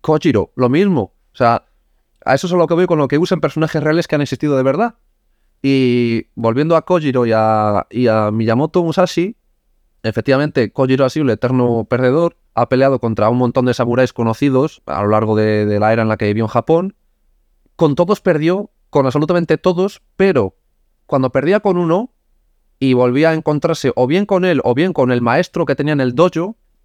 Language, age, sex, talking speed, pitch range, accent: Spanish, 30-49, male, 200 wpm, 115-165 Hz, Spanish